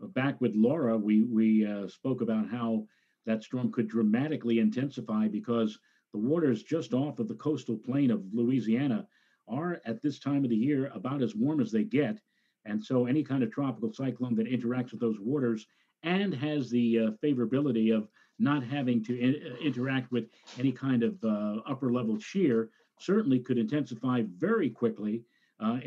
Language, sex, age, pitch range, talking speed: English, male, 50-69, 115-155 Hz, 170 wpm